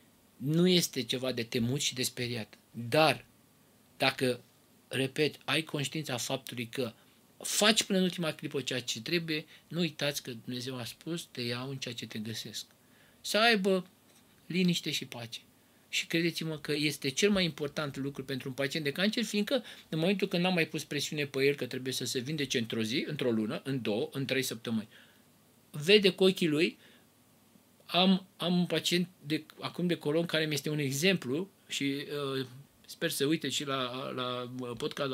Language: Romanian